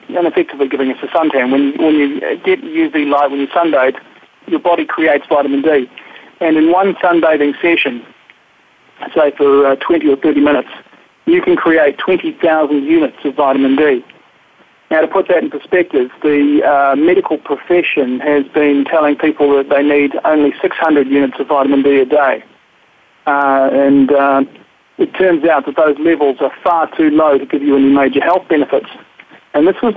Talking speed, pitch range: 175 wpm, 140-165 Hz